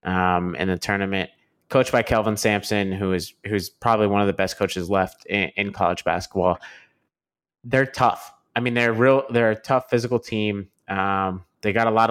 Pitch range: 95-115 Hz